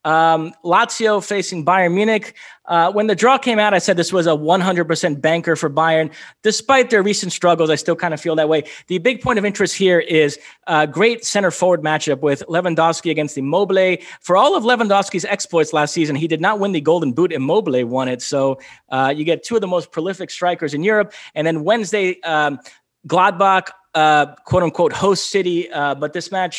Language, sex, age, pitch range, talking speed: English, male, 20-39, 150-195 Hz, 205 wpm